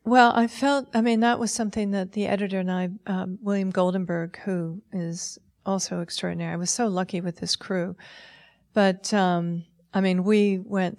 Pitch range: 175-200 Hz